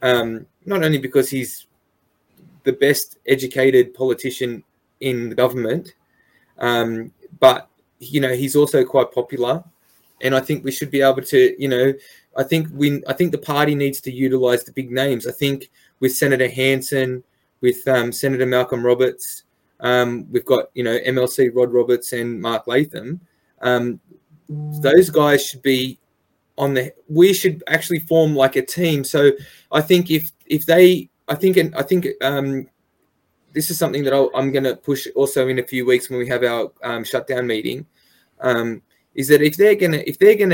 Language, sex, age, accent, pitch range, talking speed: English, male, 20-39, Australian, 125-155 Hz, 180 wpm